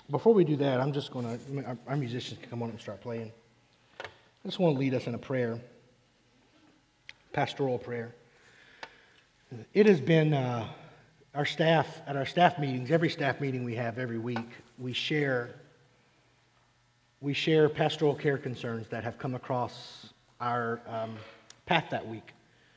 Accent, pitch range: American, 120-150 Hz